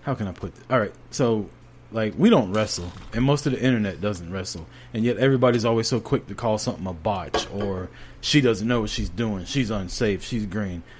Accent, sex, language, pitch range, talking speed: American, male, English, 105-135 Hz, 215 wpm